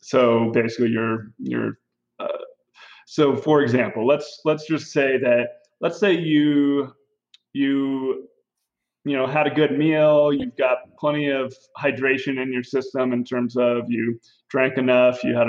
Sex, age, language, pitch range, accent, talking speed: male, 20-39, English, 125-150 Hz, American, 150 wpm